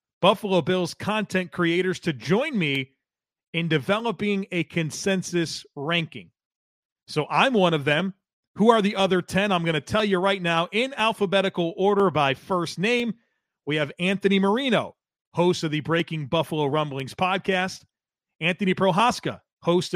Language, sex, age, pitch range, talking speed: English, male, 40-59, 155-195 Hz, 145 wpm